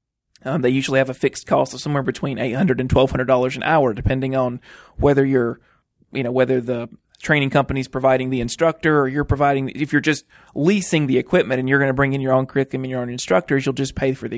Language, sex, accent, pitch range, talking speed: English, male, American, 130-150 Hz, 230 wpm